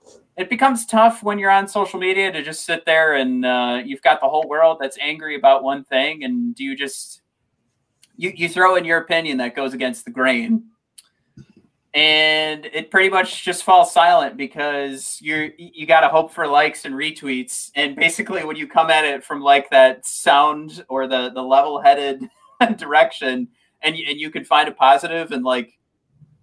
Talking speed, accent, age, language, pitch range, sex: 185 wpm, American, 30-49, English, 135-195 Hz, male